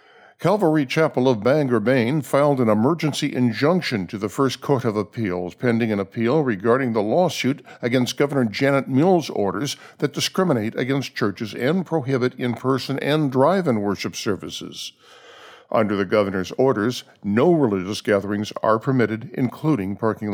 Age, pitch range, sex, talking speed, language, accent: 60-79, 110-145 Hz, male, 145 wpm, English, American